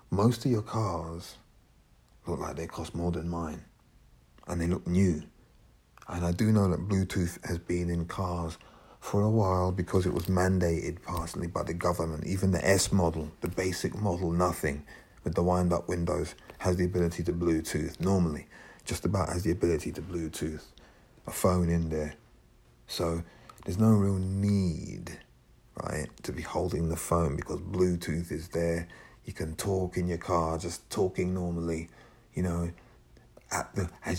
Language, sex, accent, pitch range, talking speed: English, male, British, 85-95 Hz, 160 wpm